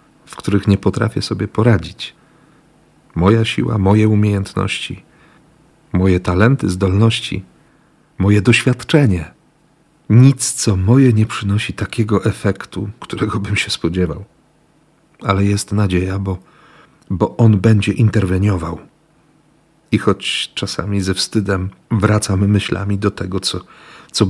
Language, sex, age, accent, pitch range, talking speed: Polish, male, 50-69, native, 95-120 Hz, 110 wpm